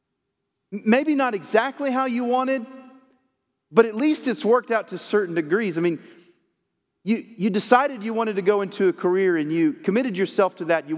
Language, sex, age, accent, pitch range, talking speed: English, male, 40-59, American, 195-265 Hz, 185 wpm